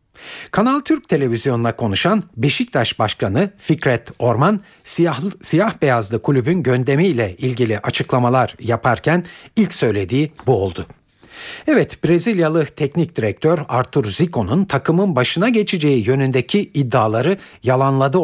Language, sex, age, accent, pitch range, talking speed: Turkish, male, 60-79, native, 115-170 Hz, 105 wpm